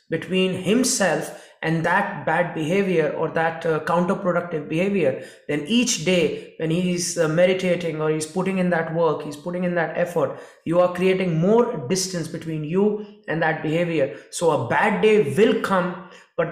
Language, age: English, 20-39